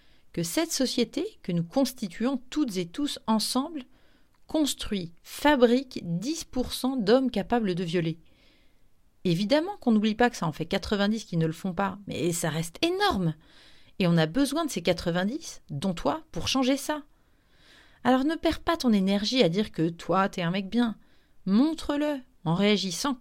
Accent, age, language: French, 40-59, French